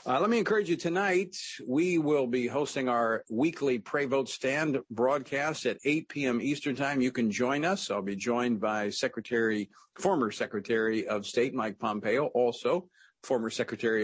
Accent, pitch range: American, 120-180 Hz